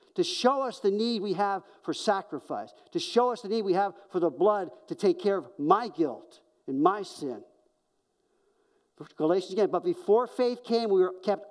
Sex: male